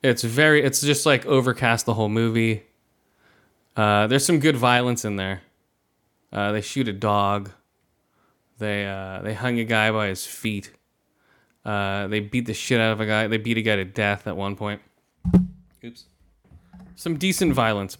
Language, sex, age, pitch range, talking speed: English, male, 20-39, 110-140 Hz, 175 wpm